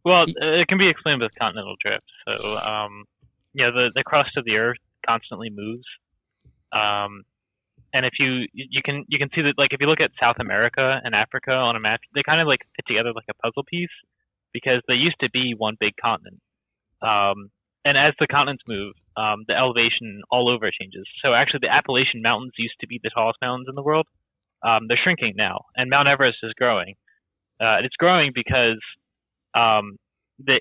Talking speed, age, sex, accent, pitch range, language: 200 wpm, 20-39, male, American, 105-135 Hz, English